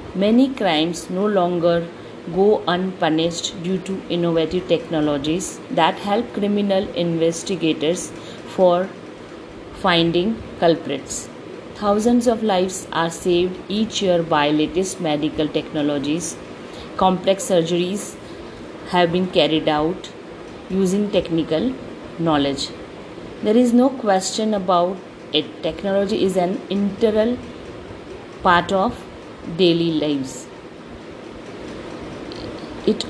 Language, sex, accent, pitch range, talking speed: English, female, Indian, 165-200 Hz, 95 wpm